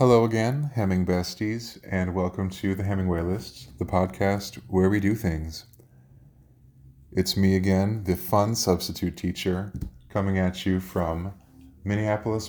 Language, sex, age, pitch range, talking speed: English, male, 20-39, 85-100 Hz, 135 wpm